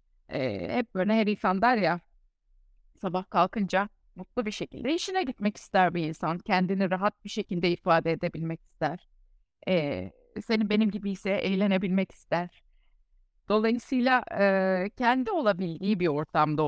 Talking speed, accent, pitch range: 135 wpm, native, 165-210 Hz